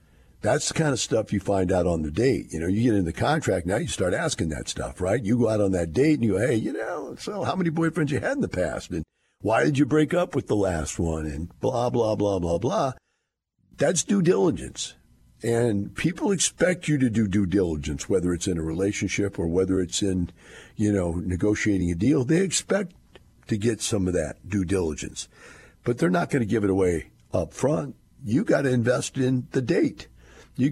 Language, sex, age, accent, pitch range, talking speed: English, male, 50-69, American, 85-125 Hz, 225 wpm